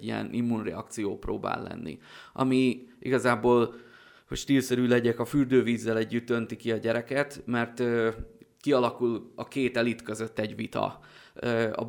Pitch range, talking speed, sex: 110-125 Hz, 120 wpm, male